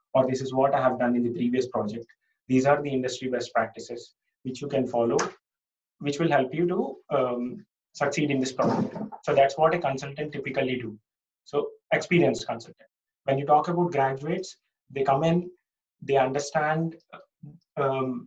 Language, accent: English, Indian